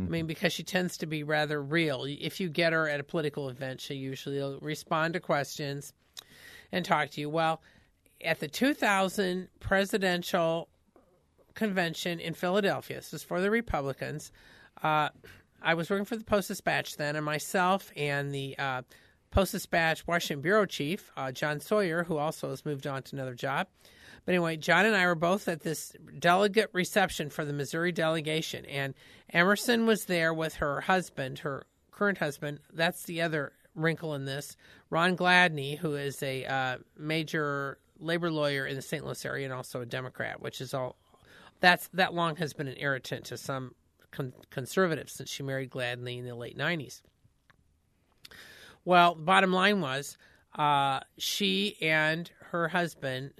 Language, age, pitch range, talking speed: English, 40-59, 140-180 Hz, 165 wpm